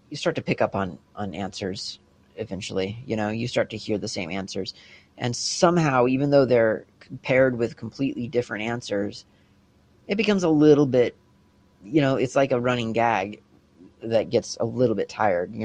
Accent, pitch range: American, 105-125 Hz